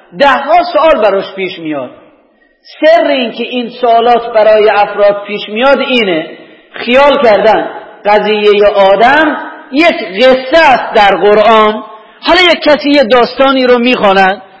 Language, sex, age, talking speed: Persian, male, 40-59, 130 wpm